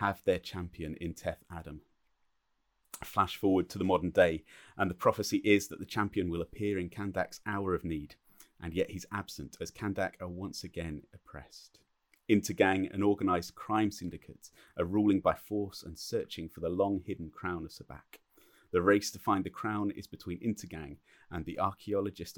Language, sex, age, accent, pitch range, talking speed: English, male, 30-49, British, 85-100 Hz, 175 wpm